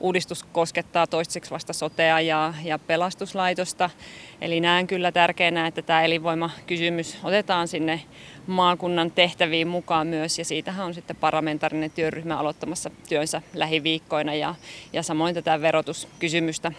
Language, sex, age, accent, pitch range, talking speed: Finnish, female, 30-49, native, 155-175 Hz, 125 wpm